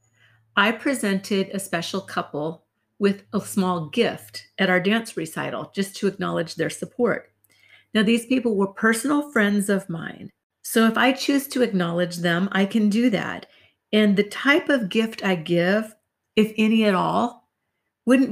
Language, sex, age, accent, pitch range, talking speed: English, female, 50-69, American, 185-235 Hz, 160 wpm